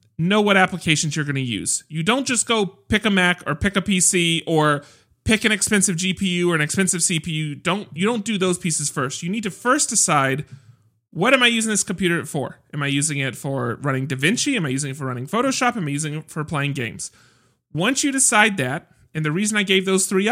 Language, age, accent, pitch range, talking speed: English, 30-49, American, 145-195 Hz, 230 wpm